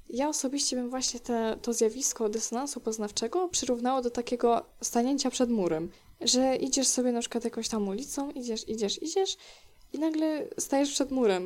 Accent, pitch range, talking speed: native, 210-265 Hz, 155 wpm